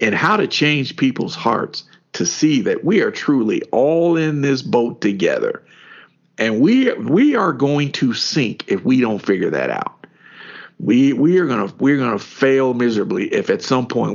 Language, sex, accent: English, male, American